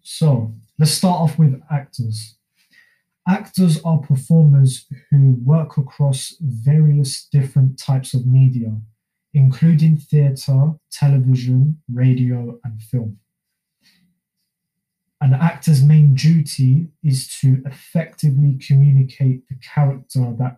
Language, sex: English, male